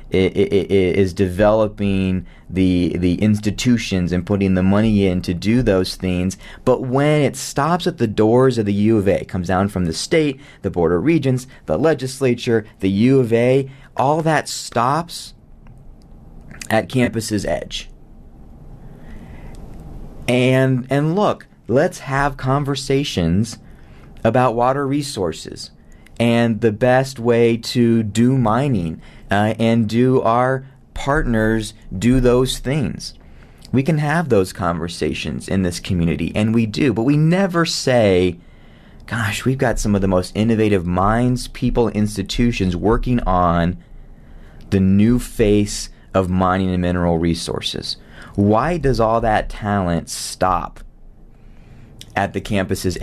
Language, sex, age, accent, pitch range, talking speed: English, male, 30-49, American, 95-125 Hz, 135 wpm